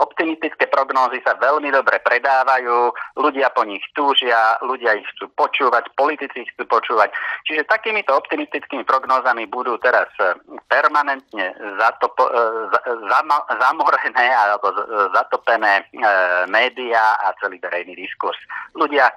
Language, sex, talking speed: Slovak, male, 125 wpm